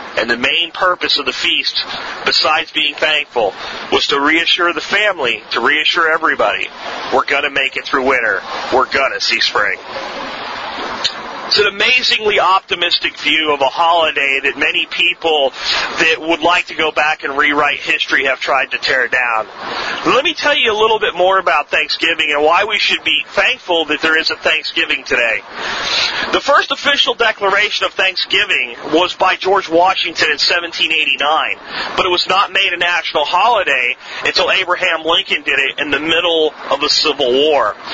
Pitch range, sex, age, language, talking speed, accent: 165-225 Hz, male, 40-59, English, 170 wpm, American